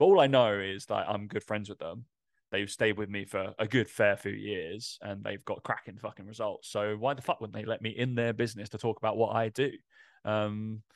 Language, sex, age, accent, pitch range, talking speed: English, male, 20-39, British, 105-125 Hz, 245 wpm